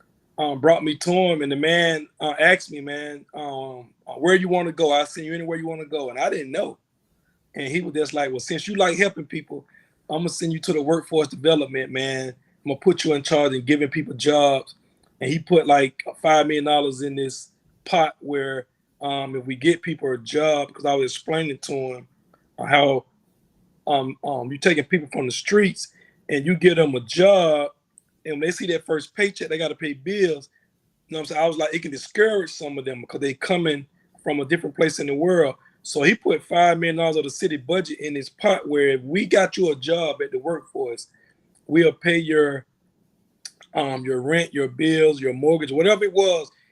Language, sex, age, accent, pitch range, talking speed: English, male, 30-49, American, 145-180 Hz, 215 wpm